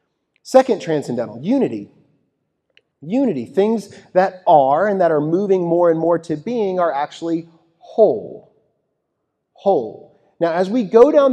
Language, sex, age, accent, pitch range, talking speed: English, male, 30-49, American, 150-200 Hz, 130 wpm